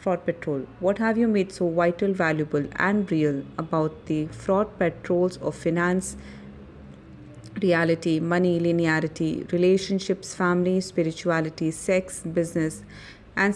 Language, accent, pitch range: English, Indian, 160-190 Hz